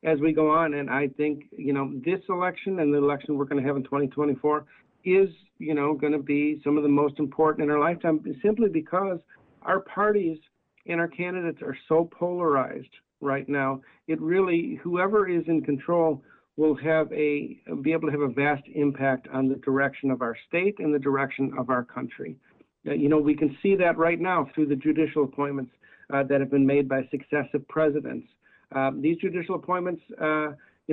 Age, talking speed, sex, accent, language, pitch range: 50-69, 195 wpm, male, American, English, 140-170 Hz